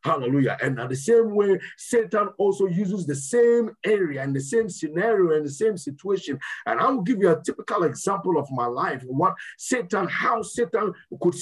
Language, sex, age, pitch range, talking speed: English, male, 50-69, 160-220 Hz, 185 wpm